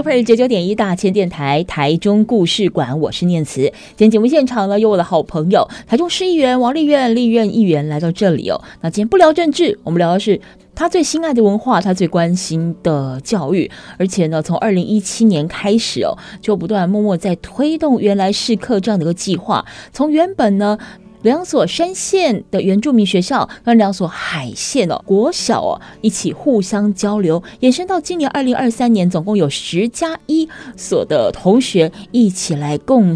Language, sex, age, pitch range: Chinese, female, 20-39, 175-235 Hz